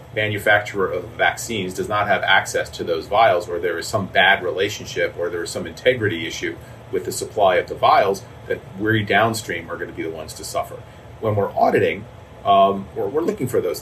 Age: 40-59